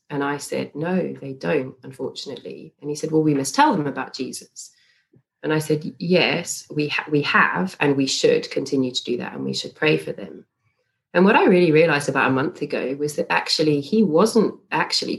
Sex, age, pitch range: female, 30-49, 130-160 Hz